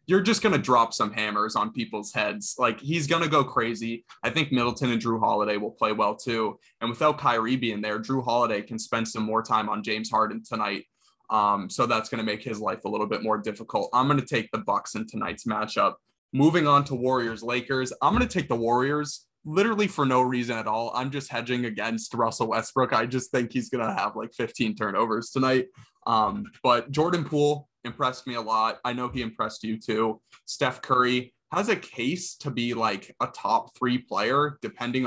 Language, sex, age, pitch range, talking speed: English, male, 20-39, 115-145 Hz, 210 wpm